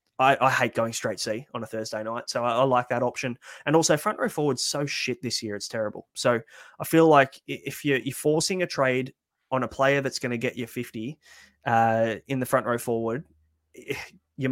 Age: 20-39